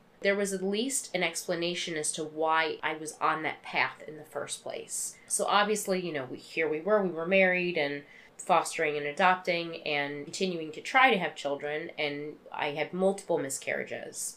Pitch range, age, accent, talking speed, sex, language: 150-190 Hz, 30-49, American, 185 wpm, female, English